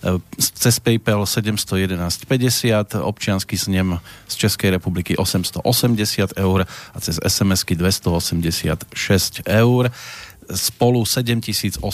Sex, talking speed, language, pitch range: male, 85 wpm, Slovak, 95-115 Hz